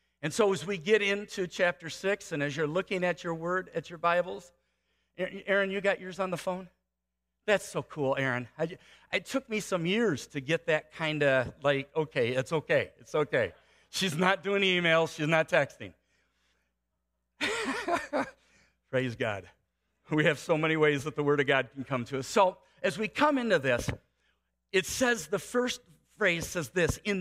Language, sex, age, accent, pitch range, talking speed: English, male, 50-69, American, 140-200 Hz, 180 wpm